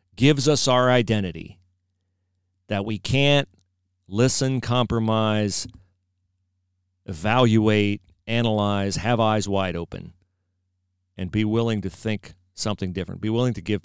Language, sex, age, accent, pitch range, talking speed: English, male, 40-59, American, 95-145 Hz, 115 wpm